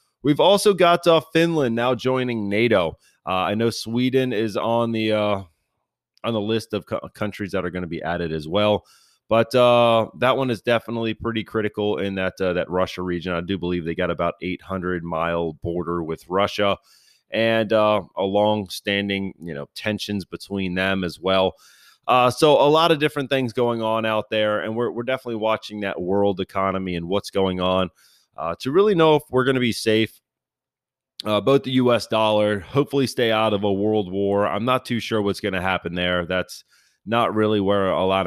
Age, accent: 30-49, American